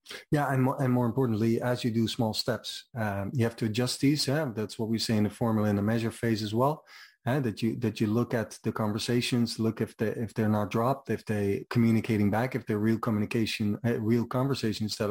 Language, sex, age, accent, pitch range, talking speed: English, male, 30-49, Dutch, 110-120 Hz, 225 wpm